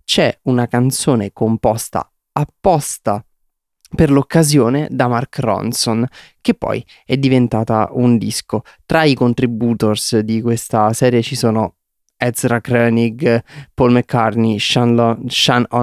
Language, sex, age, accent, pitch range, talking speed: Italian, male, 20-39, native, 115-130 Hz, 115 wpm